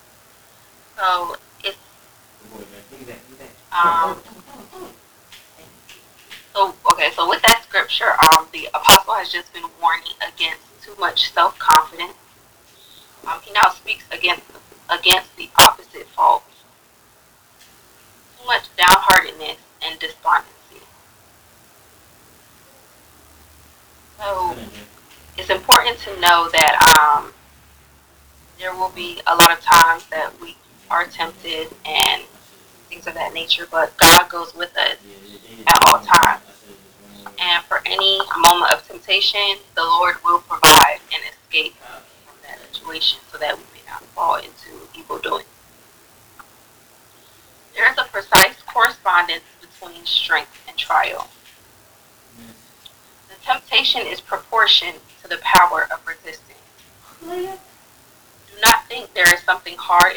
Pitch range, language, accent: 150-230 Hz, English, American